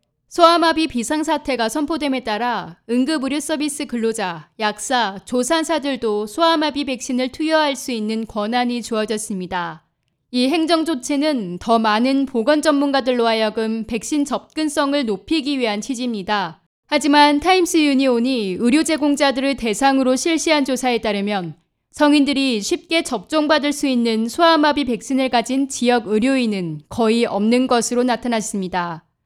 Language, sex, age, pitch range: Korean, female, 20-39, 220-295 Hz